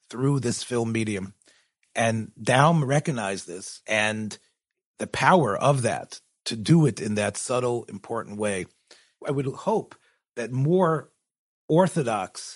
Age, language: 40-59, English